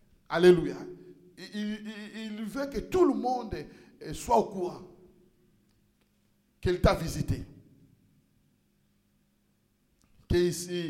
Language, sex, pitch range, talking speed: French, male, 210-300 Hz, 90 wpm